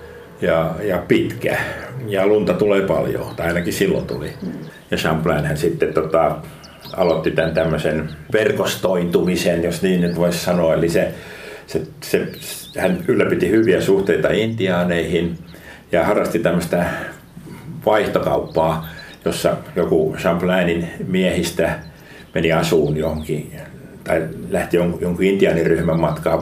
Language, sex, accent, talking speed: Finnish, male, native, 115 wpm